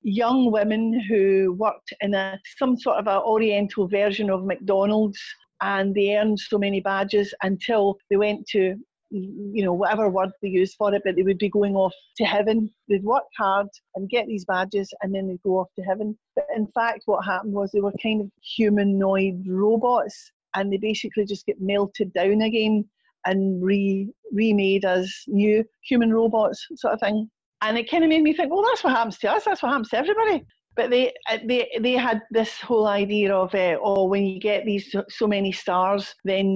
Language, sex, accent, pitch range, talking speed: English, female, British, 195-220 Hz, 200 wpm